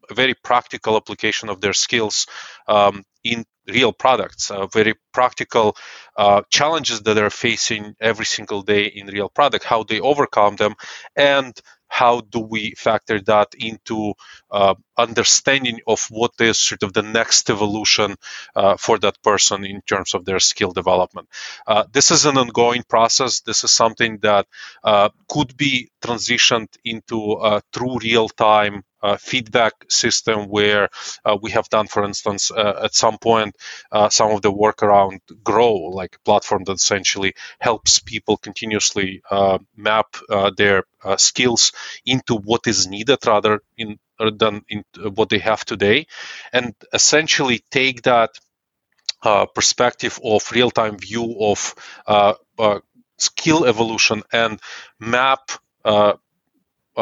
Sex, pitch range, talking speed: male, 105-120 Hz, 145 wpm